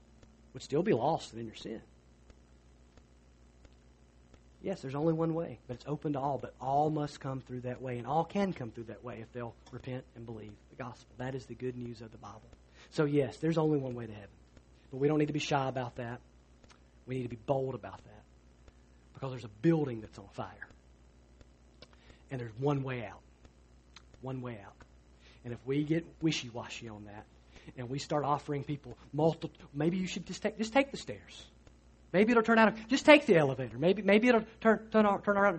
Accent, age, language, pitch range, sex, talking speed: American, 40-59, English, 100-155 Hz, male, 205 wpm